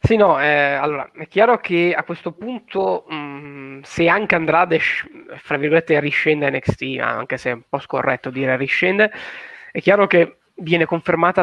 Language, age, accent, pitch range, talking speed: Italian, 20-39, native, 135-165 Hz, 170 wpm